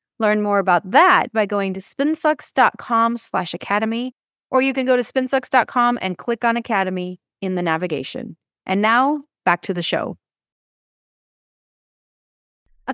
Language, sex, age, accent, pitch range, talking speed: English, female, 30-49, American, 195-265 Hz, 140 wpm